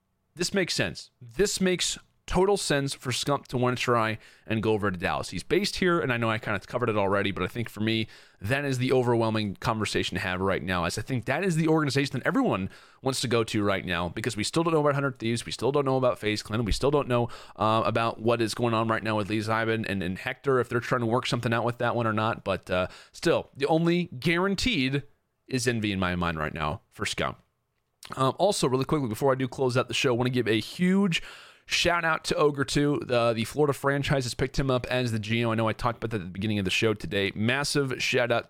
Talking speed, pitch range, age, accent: 255 wpm, 110-140 Hz, 30-49, American